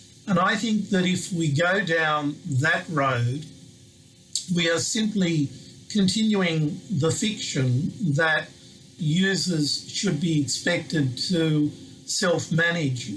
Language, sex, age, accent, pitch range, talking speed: English, male, 50-69, Australian, 135-170 Hz, 105 wpm